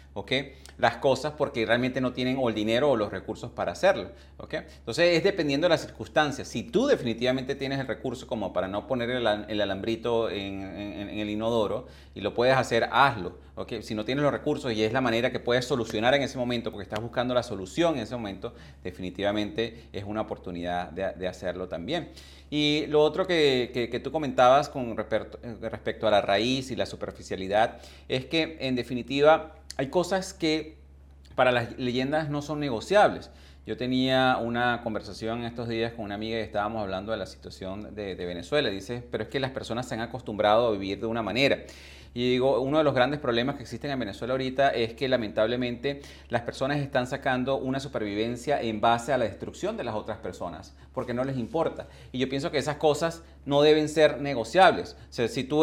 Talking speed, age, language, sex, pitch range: 200 wpm, 30-49, Spanish, male, 105-140 Hz